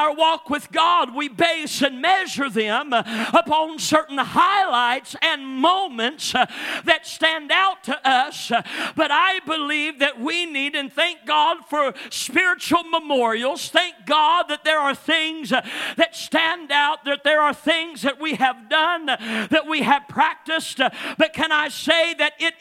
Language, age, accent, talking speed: English, 50-69, American, 155 wpm